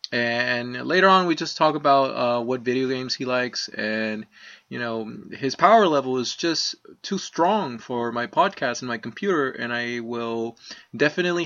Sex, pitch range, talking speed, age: male, 115-145 Hz, 175 wpm, 20-39